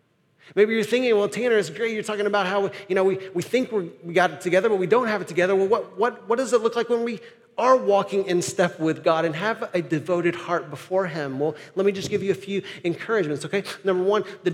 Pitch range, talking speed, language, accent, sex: 170-205 Hz, 250 wpm, English, American, male